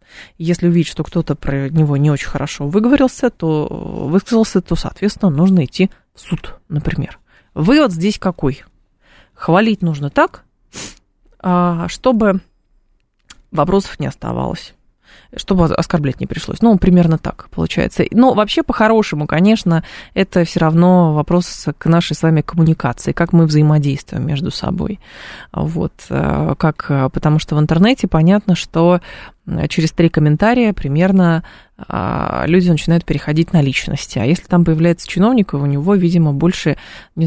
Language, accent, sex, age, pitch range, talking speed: Russian, native, female, 20-39, 155-195 Hz, 130 wpm